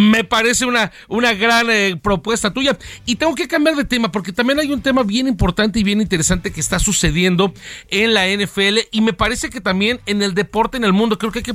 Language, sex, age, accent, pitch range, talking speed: Spanish, male, 40-59, Mexican, 185-240 Hz, 235 wpm